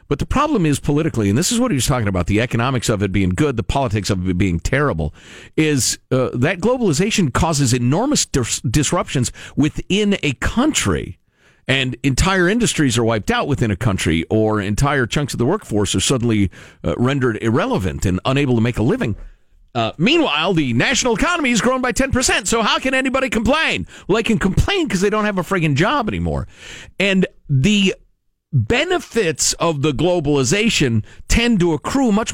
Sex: male